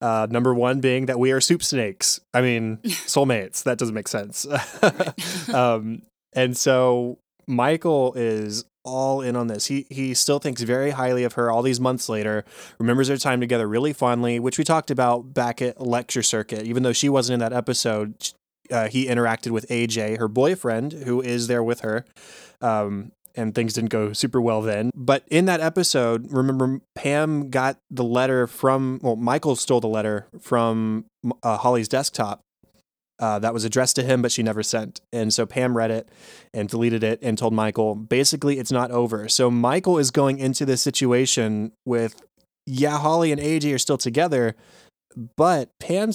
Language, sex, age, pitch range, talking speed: English, male, 20-39, 115-135 Hz, 180 wpm